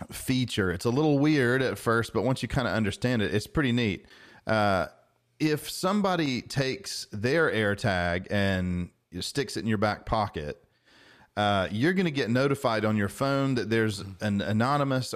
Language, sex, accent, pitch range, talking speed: English, male, American, 100-125 Hz, 170 wpm